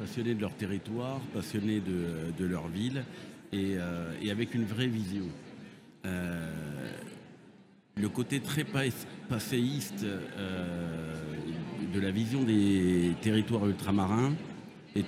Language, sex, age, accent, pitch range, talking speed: French, male, 60-79, French, 110-145 Hz, 105 wpm